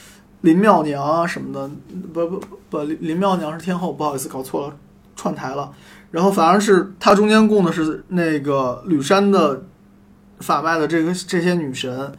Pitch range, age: 145-185 Hz, 20-39